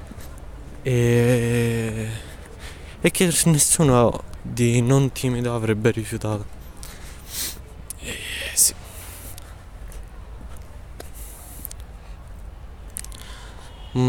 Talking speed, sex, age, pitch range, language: 55 wpm, male, 20-39, 85-120 Hz, Italian